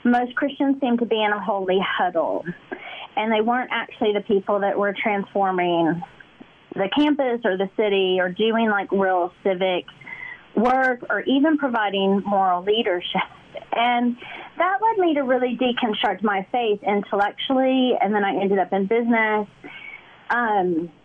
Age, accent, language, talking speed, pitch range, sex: 30-49, American, English, 150 wpm, 200-255 Hz, female